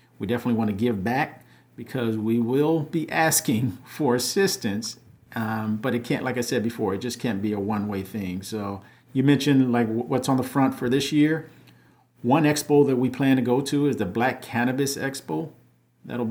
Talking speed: 195 wpm